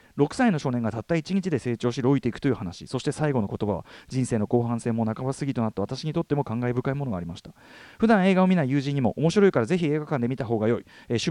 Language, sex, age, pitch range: Japanese, male, 40-59, 120-185 Hz